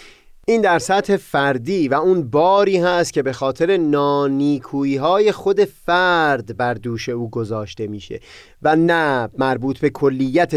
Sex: male